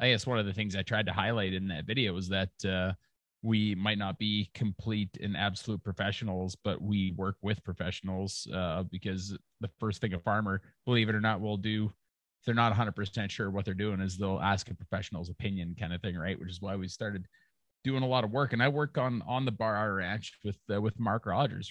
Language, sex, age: English, male, 30-49